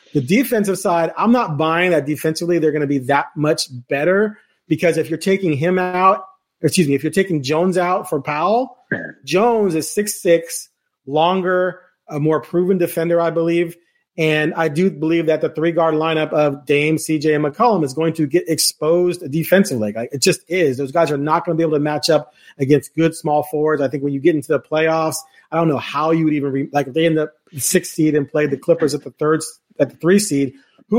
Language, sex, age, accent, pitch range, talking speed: English, male, 30-49, American, 150-185 Hz, 230 wpm